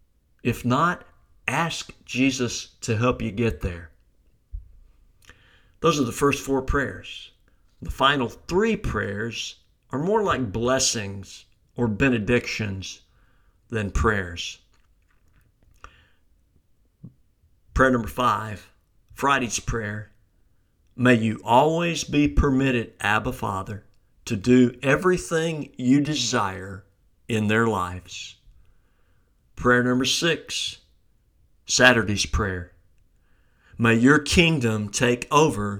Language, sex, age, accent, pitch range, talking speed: English, male, 50-69, American, 95-125 Hz, 95 wpm